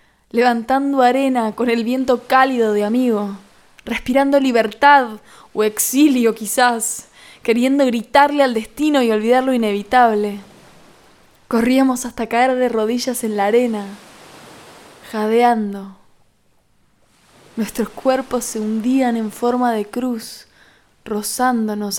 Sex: female